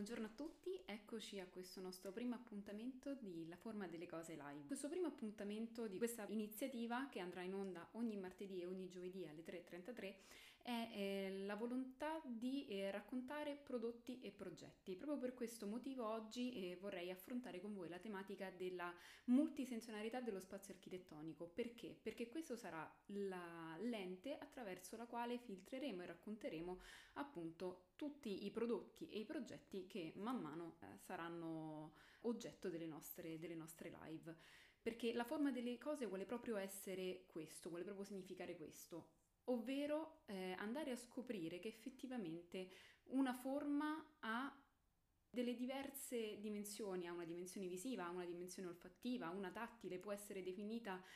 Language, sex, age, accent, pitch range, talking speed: Italian, female, 20-39, native, 180-245 Hz, 145 wpm